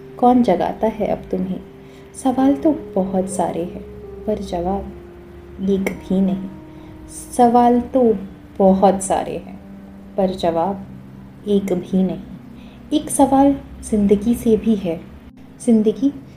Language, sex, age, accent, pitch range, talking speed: Hindi, female, 20-39, native, 180-220 Hz, 115 wpm